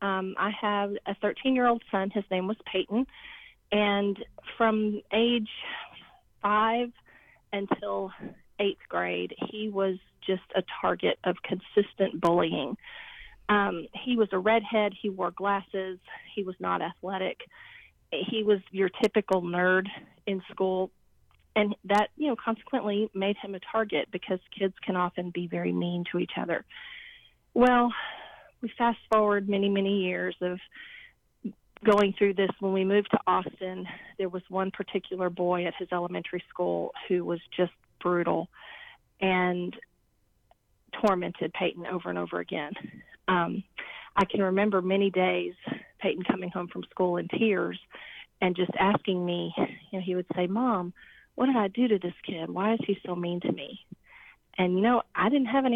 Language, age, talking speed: English, 40-59, 155 wpm